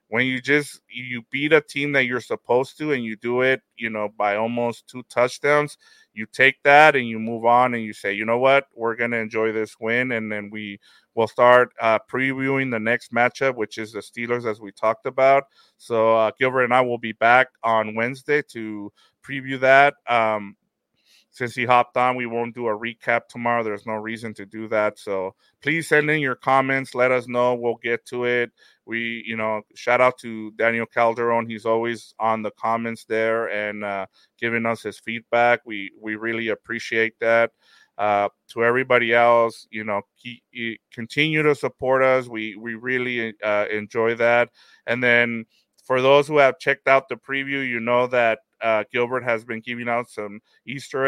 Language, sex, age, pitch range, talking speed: English, male, 30-49, 110-125 Hz, 195 wpm